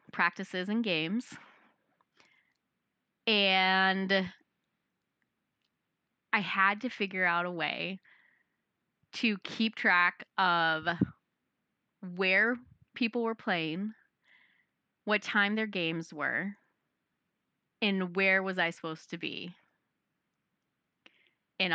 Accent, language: American, English